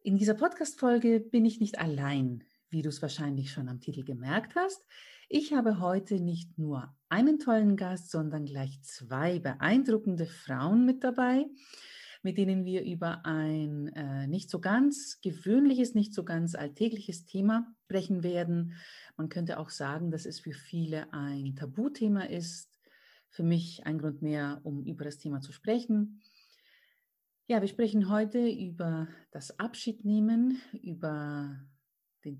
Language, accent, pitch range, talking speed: German, German, 155-225 Hz, 145 wpm